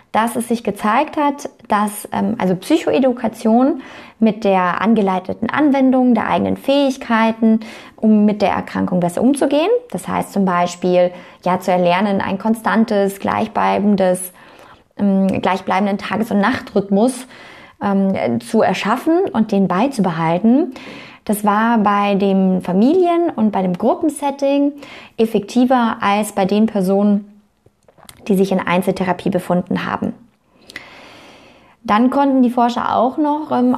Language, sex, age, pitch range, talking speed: German, female, 20-39, 195-250 Hz, 125 wpm